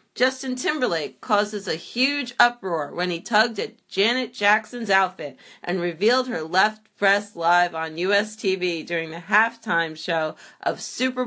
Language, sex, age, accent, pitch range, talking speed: English, female, 30-49, American, 180-225 Hz, 150 wpm